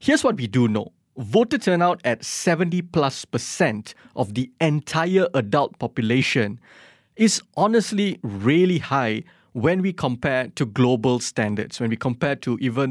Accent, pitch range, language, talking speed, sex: Malaysian, 115-165 Hz, English, 140 wpm, male